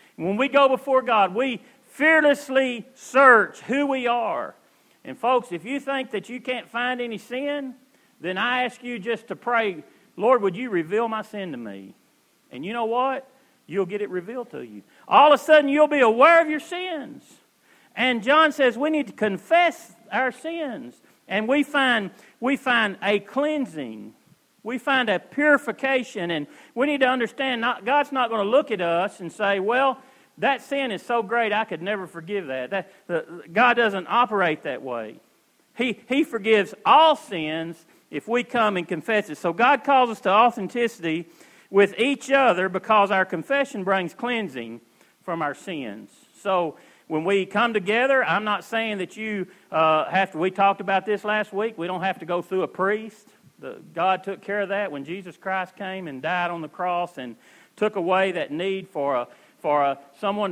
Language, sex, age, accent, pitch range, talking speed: English, male, 40-59, American, 185-255 Hz, 190 wpm